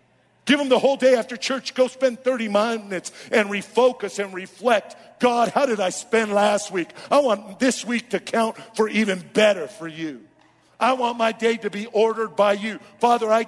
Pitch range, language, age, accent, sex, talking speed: 210-255 Hz, English, 50-69, American, male, 195 wpm